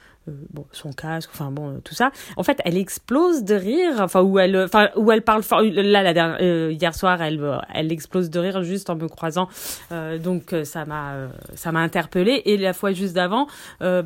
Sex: female